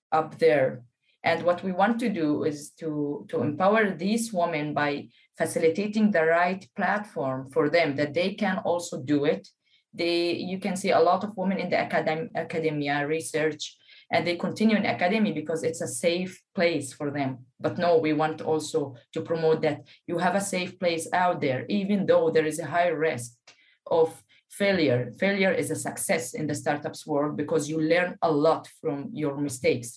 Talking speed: 185 wpm